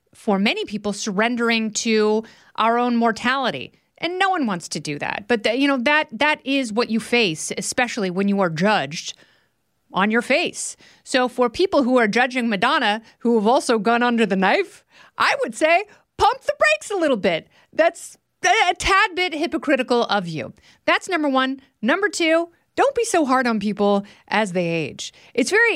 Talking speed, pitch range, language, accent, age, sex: 180 wpm, 215-315 Hz, English, American, 30-49, female